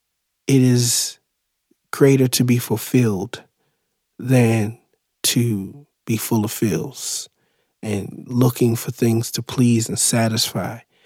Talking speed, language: 110 wpm, English